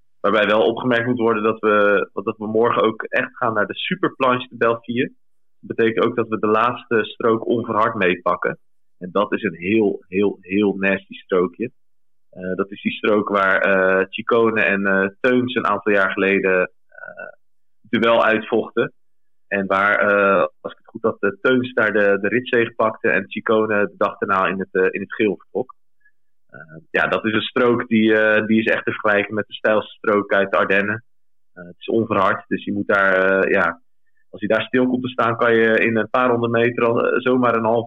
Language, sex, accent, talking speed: Dutch, male, Dutch, 205 wpm